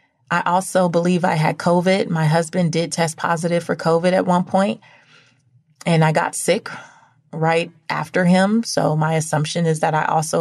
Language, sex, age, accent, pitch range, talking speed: English, female, 30-49, American, 125-170 Hz, 175 wpm